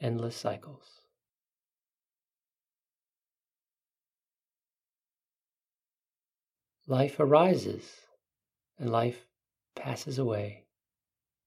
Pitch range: 105-130 Hz